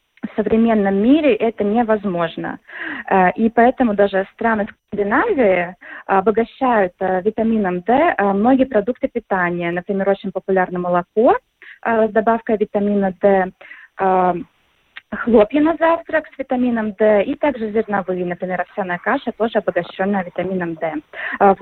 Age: 20-39